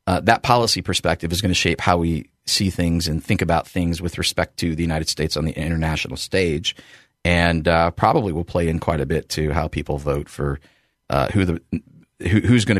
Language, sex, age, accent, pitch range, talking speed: English, male, 30-49, American, 80-100 Hz, 215 wpm